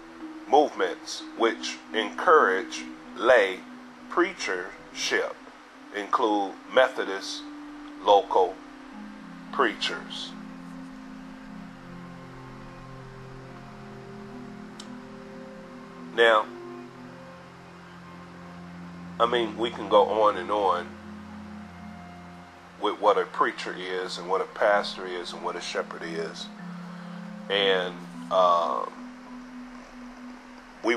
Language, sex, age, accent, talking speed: English, male, 40-59, American, 70 wpm